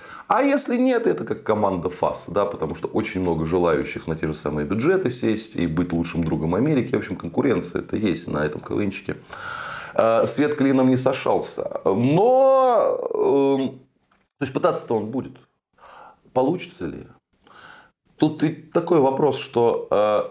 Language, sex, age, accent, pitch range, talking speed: Russian, male, 20-39, native, 85-130 Hz, 140 wpm